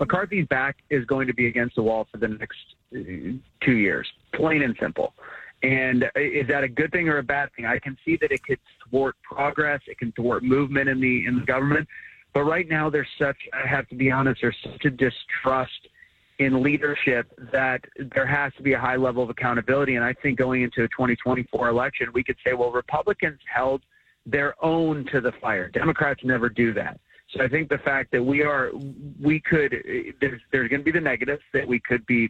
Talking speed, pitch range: 210 wpm, 125-145 Hz